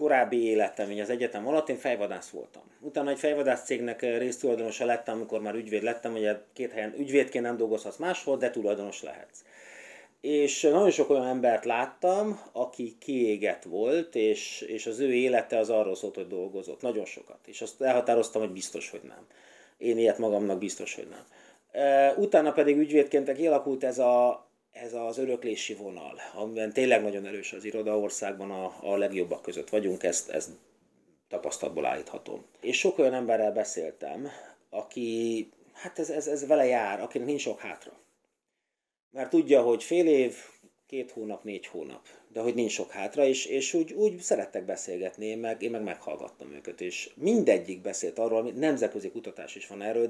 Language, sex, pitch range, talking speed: Hungarian, male, 110-140 Hz, 165 wpm